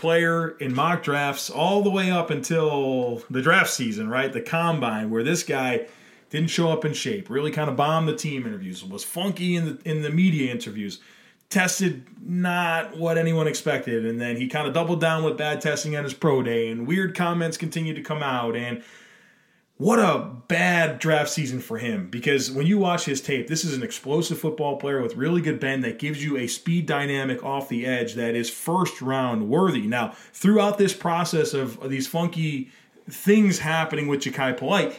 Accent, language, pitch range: American, English, 135-175 Hz